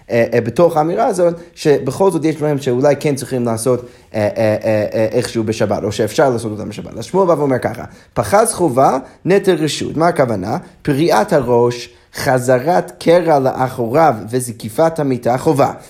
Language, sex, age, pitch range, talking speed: Hebrew, male, 30-49, 115-150 Hz, 145 wpm